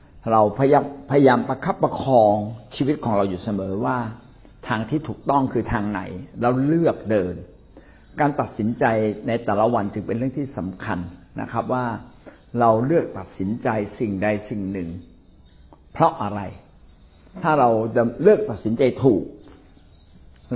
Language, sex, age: Thai, male, 60-79